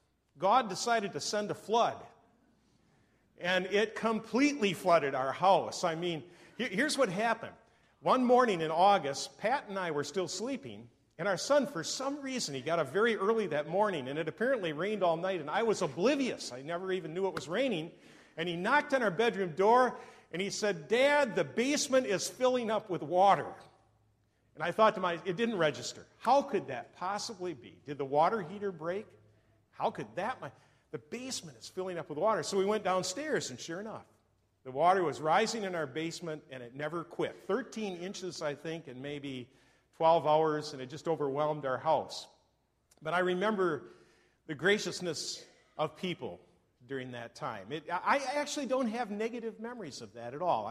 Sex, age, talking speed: male, 50-69, 185 wpm